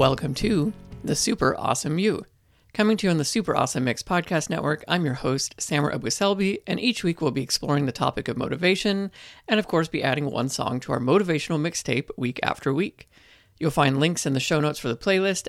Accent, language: American, English